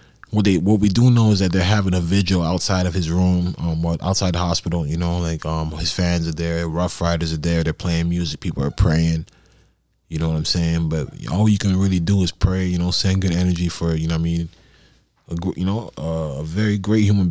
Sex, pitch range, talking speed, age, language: male, 80-95 Hz, 245 wpm, 20-39, English